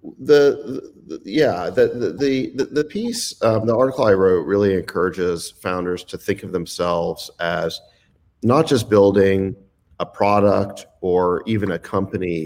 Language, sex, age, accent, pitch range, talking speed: English, male, 40-59, American, 90-110 Hz, 145 wpm